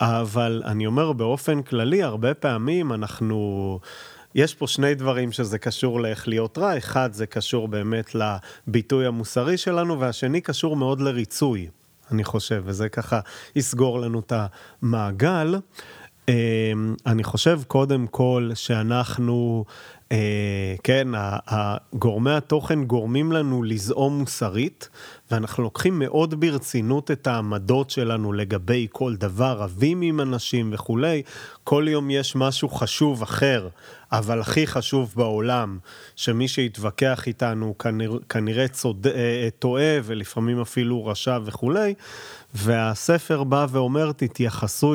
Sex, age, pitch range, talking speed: male, 30-49, 110-135 Hz, 115 wpm